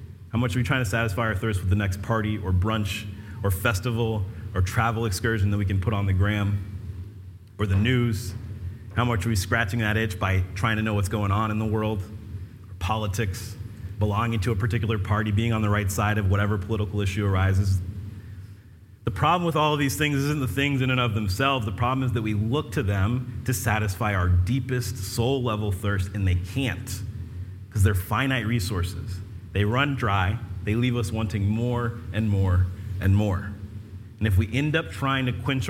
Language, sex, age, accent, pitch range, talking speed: English, male, 30-49, American, 95-115 Hz, 200 wpm